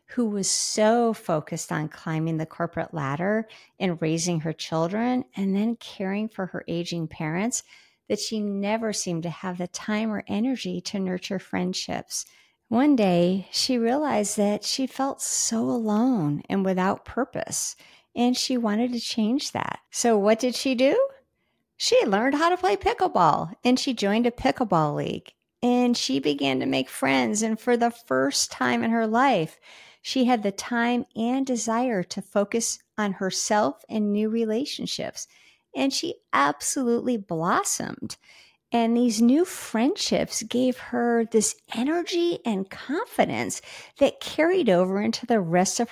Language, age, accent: English, 50-69, American